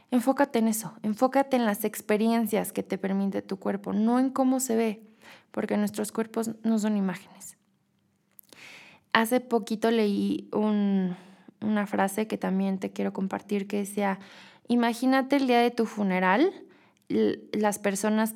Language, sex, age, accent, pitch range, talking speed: Spanish, female, 20-39, Mexican, 200-230 Hz, 145 wpm